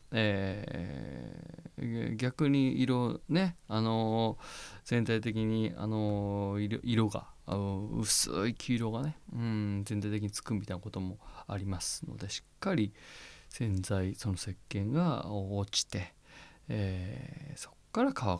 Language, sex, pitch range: Japanese, male, 100-140 Hz